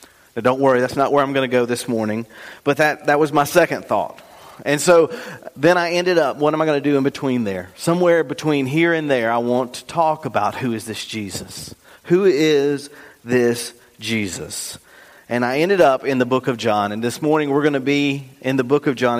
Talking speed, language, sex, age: 225 wpm, English, male, 40-59